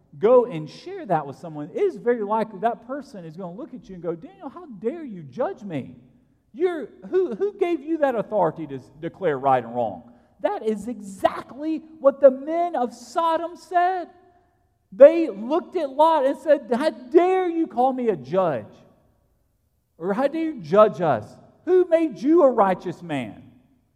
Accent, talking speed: American, 185 wpm